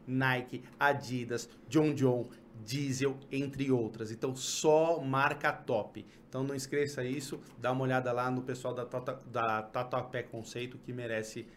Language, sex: Portuguese, male